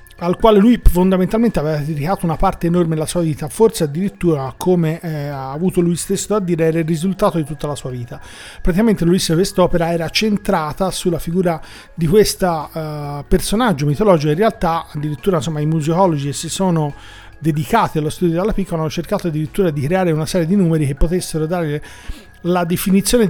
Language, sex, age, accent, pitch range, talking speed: Italian, male, 40-59, native, 155-185 Hz, 180 wpm